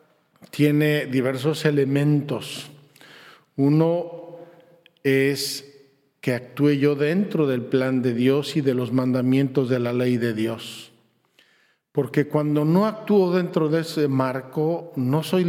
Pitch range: 135-160 Hz